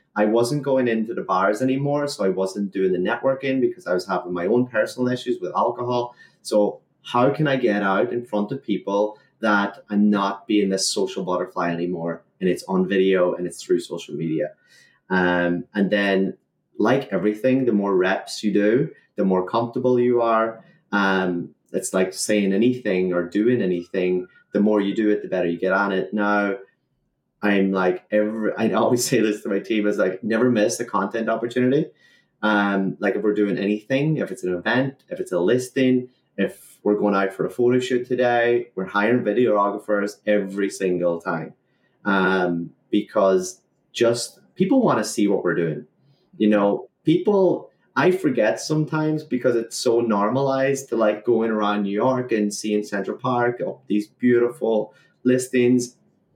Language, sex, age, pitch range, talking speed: English, male, 30-49, 95-125 Hz, 175 wpm